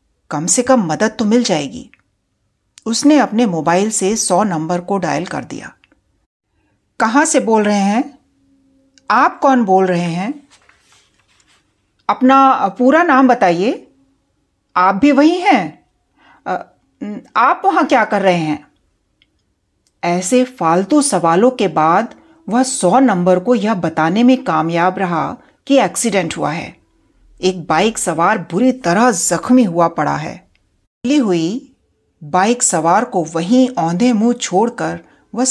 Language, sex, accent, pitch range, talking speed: Hindi, female, native, 170-250 Hz, 130 wpm